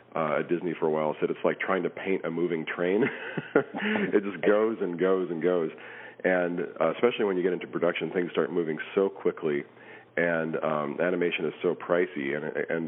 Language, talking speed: English, 200 wpm